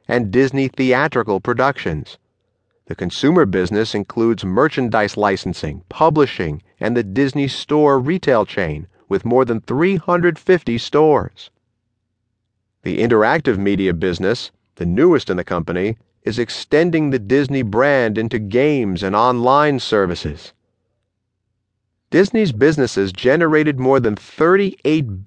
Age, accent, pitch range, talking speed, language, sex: 40-59, American, 105-150 Hz, 110 wpm, English, male